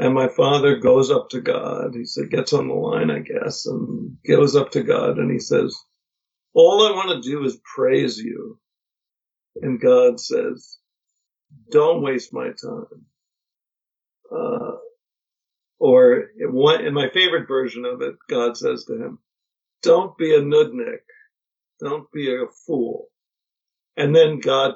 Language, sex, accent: English, male, American